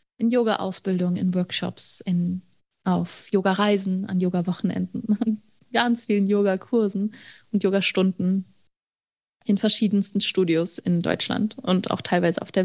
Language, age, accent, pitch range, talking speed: German, 30-49, German, 185-220 Hz, 120 wpm